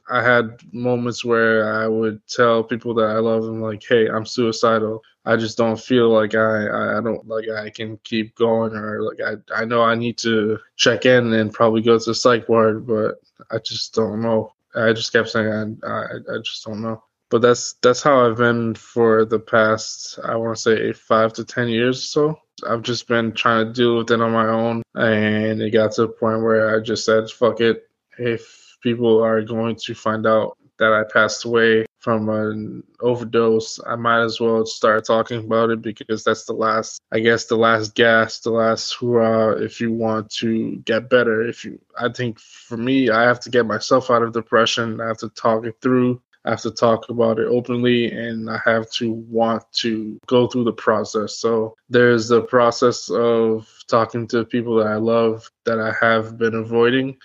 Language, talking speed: English, 205 wpm